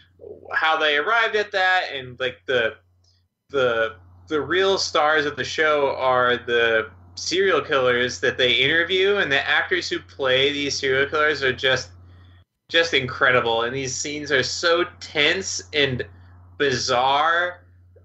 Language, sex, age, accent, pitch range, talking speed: English, male, 20-39, American, 110-155 Hz, 140 wpm